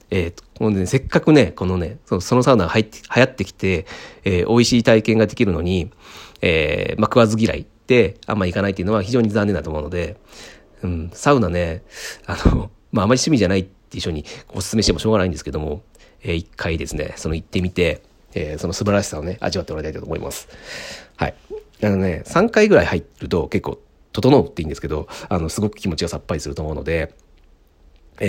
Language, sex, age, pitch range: Japanese, male, 40-59, 80-110 Hz